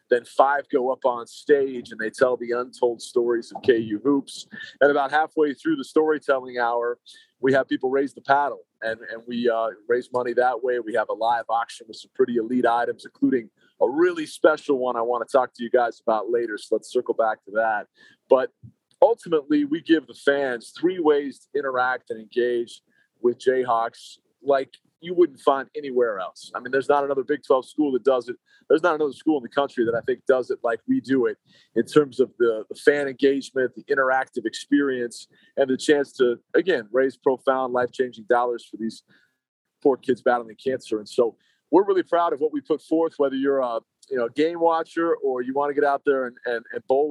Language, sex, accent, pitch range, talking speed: English, male, American, 120-155 Hz, 210 wpm